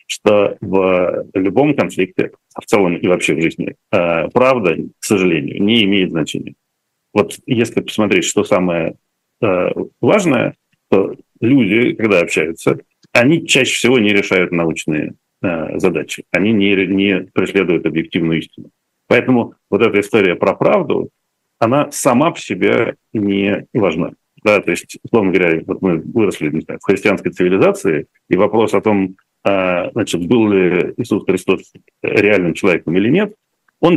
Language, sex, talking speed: Russian, male, 135 wpm